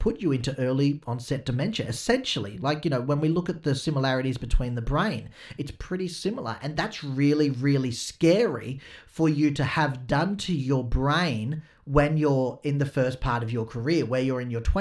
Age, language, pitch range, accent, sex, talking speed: 40-59, English, 130-160 Hz, Australian, male, 195 wpm